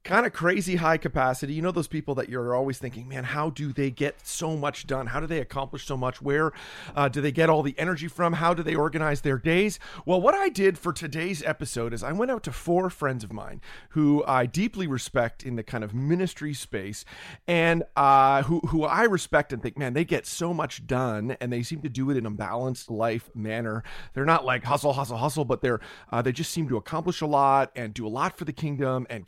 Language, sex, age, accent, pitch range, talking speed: English, male, 40-59, American, 130-165 Hz, 240 wpm